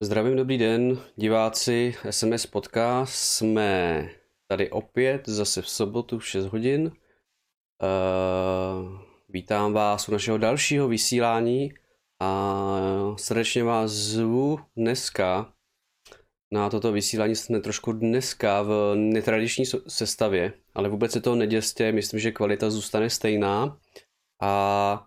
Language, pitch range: Czech, 105-120 Hz